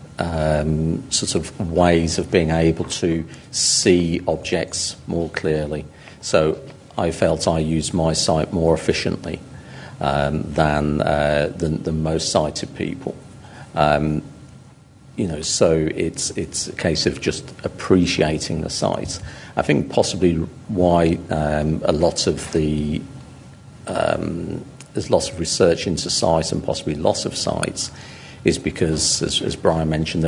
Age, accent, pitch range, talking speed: 50-69, British, 75-85 Hz, 135 wpm